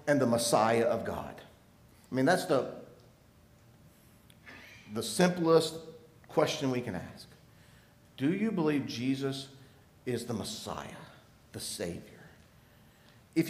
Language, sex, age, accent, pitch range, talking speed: English, male, 50-69, American, 140-215 Hz, 110 wpm